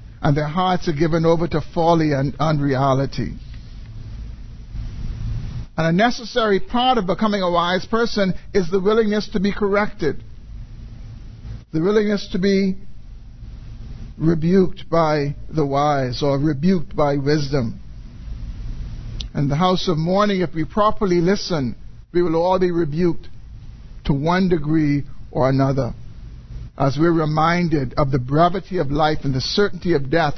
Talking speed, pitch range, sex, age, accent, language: 135 wpm, 130-180 Hz, male, 60-79, American, English